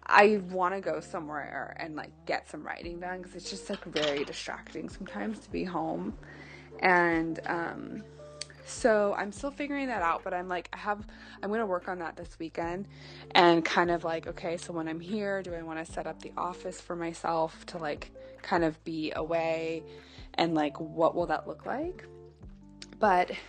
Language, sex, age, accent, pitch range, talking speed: English, female, 20-39, American, 160-200 Hz, 185 wpm